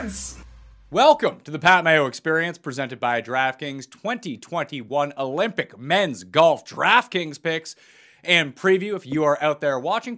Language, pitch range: English, 135-180 Hz